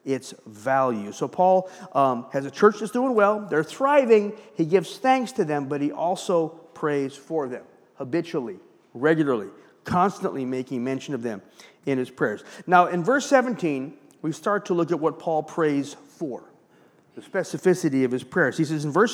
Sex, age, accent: male, 50-69, American